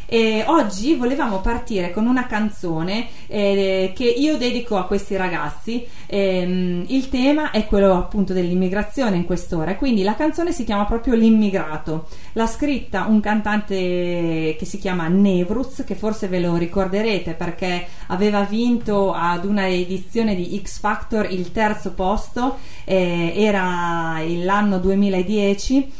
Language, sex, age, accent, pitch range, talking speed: Italian, female, 30-49, native, 175-220 Hz, 135 wpm